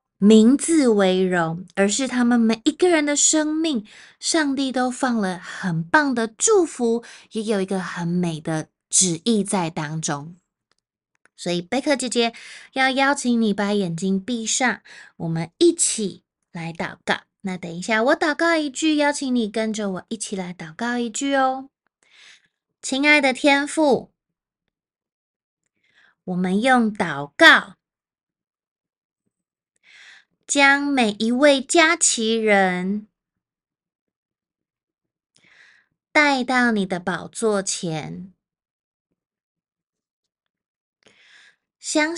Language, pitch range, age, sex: Chinese, 185-275 Hz, 20-39, female